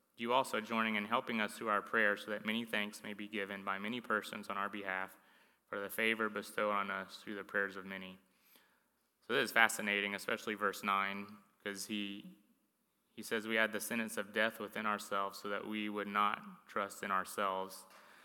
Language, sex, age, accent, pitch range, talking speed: English, male, 20-39, American, 100-110 Hz, 195 wpm